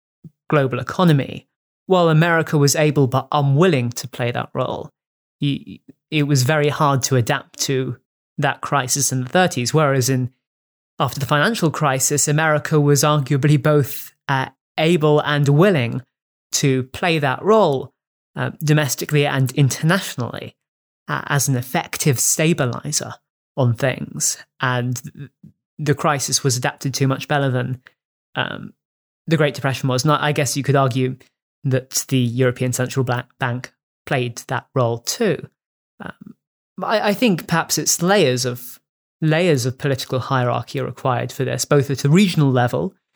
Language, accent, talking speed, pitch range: English, British, 145 wpm, 130-150 Hz